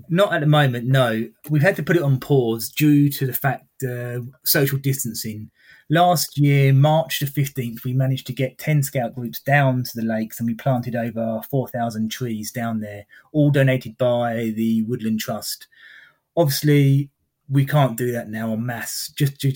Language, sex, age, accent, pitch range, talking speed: English, male, 30-49, British, 120-145 Hz, 185 wpm